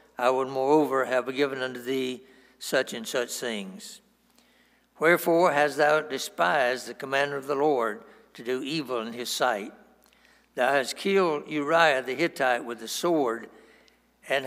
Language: English